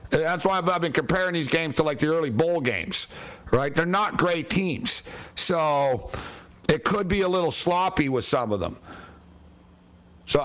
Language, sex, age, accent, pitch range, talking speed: English, male, 60-79, American, 125-165 Hz, 180 wpm